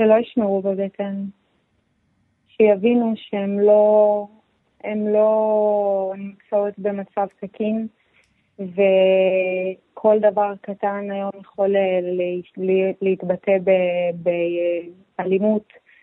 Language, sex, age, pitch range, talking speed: English, female, 20-39, 190-210 Hz, 65 wpm